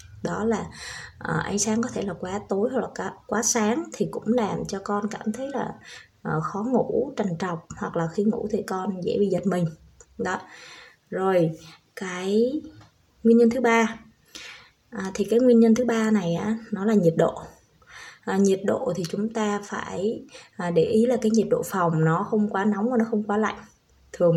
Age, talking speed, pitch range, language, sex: 20-39, 190 wpm, 190-235 Hz, Vietnamese, female